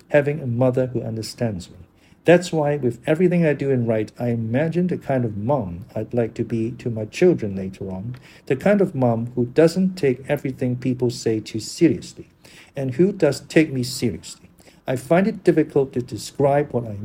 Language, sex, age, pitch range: English, male, 50-69, 115-150 Hz